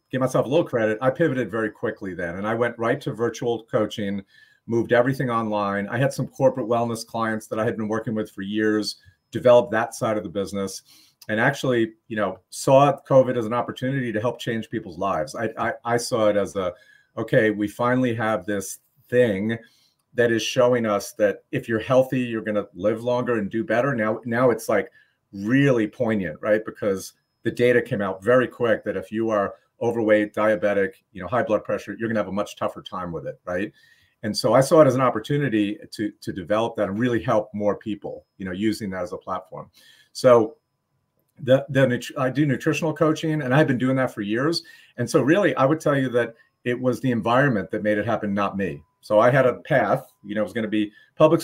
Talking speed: 220 wpm